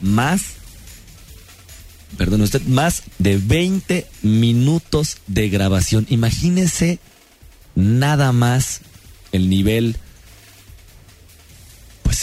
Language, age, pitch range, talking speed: Spanish, 40-59, 90-120 Hz, 75 wpm